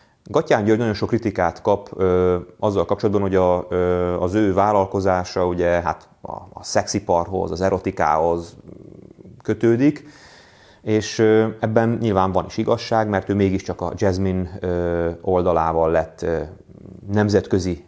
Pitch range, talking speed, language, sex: 95-115 Hz, 125 wpm, Hungarian, male